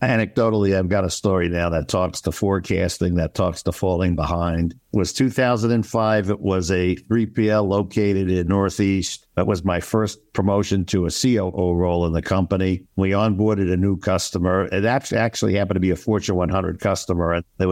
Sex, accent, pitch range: male, American, 85-100 Hz